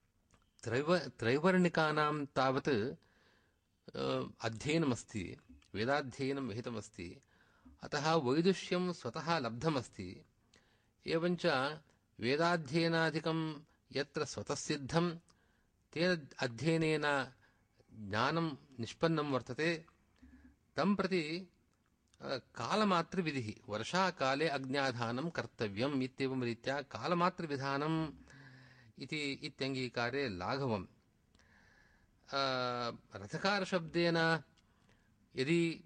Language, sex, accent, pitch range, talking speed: English, male, Indian, 120-160 Hz, 65 wpm